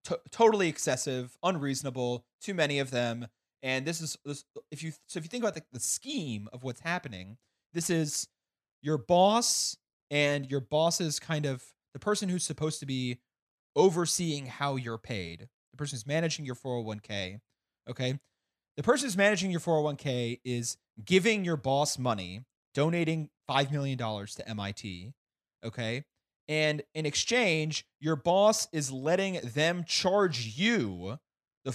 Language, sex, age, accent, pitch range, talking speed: English, male, 30-49, American, 125-170 Hz, 150 wpm